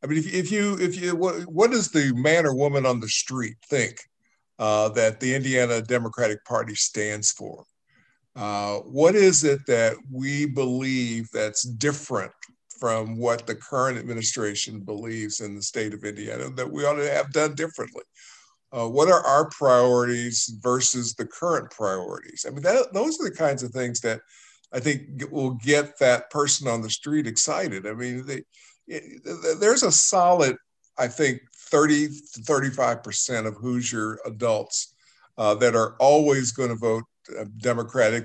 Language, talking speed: English, 165 wpm